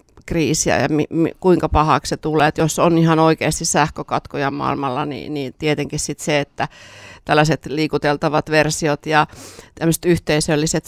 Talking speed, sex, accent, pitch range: 155 wpm, female, native, 145-165 Hz